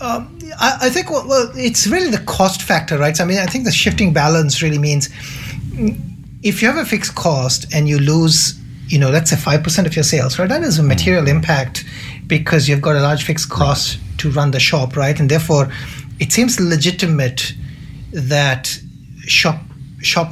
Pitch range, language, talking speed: 135-170 Hz, English, 190 wpm